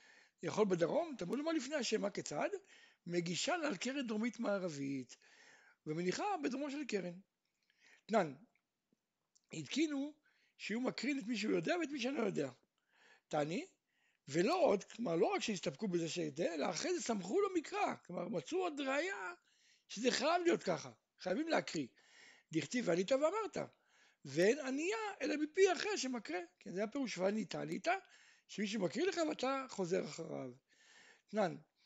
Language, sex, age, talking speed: Hebrew, male, 60-79, 135 wpm